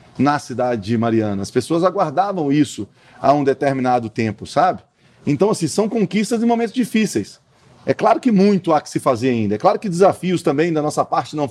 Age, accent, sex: 40-59, Brazilian, male